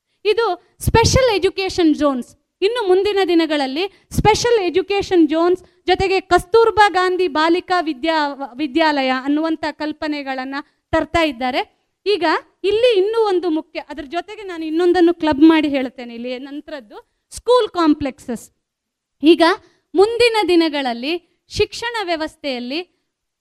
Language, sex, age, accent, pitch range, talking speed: Kannada, female, 20-39, native, 300-385 Hz, 105 wpm